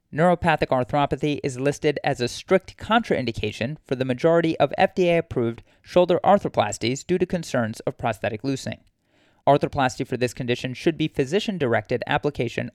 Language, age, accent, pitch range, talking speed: English, 30-49, American, 125-165 Hz, 135 wpm